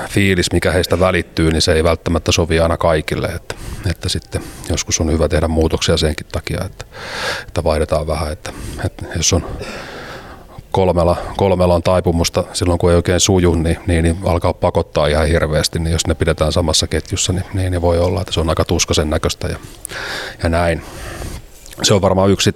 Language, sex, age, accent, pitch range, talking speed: Finnish, male, 30-49, native, 80-90 Hz, 185 wpm